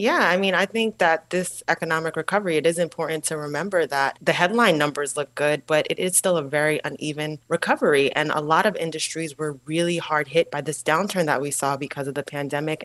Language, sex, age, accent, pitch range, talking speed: English, female, 20-39, American, 145-170 Hz, 220 wpm